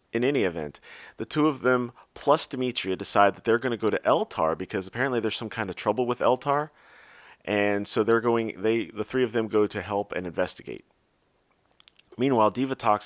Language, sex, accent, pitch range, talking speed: English, male, American, 105-125 Hz, 195 wpm